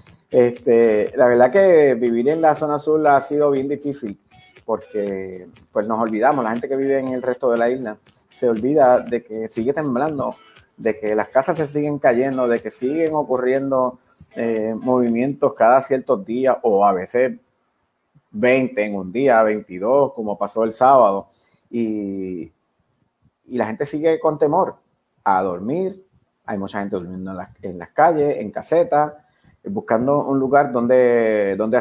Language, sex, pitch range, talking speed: Spanish, male, 110-140 Hz, 155 wpm